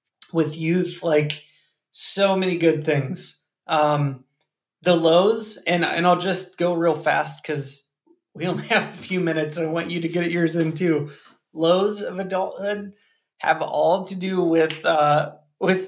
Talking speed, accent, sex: 165 wpm, American, male